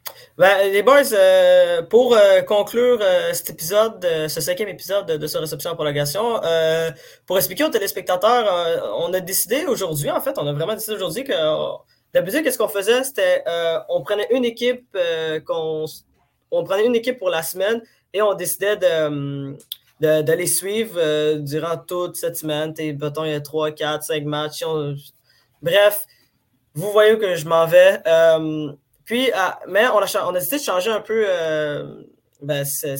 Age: 20-39